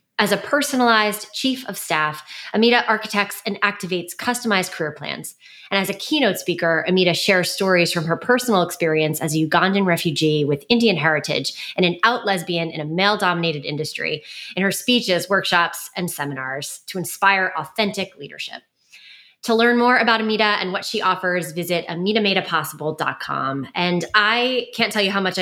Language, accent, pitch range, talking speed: English, American, 170-215 Hz, 160 wpm